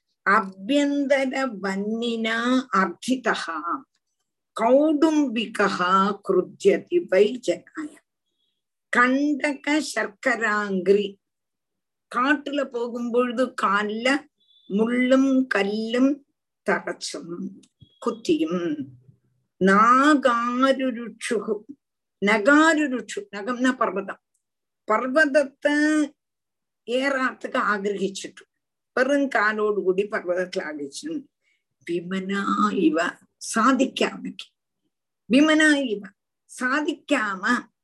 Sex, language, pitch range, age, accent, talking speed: female, Tamil, 195-285 Hz, 50-69, native, 35 wpm